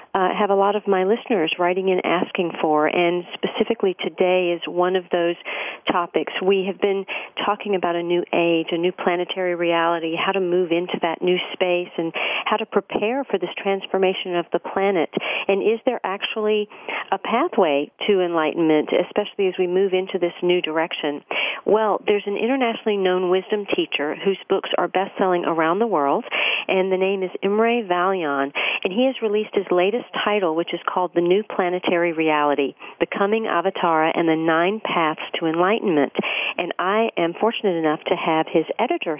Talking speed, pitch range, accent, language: 180 wpm, 175-205 Hz, American, English